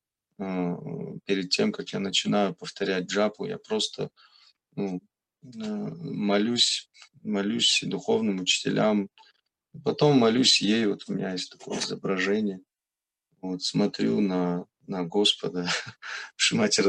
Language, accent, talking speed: Russian, native, 105 wpm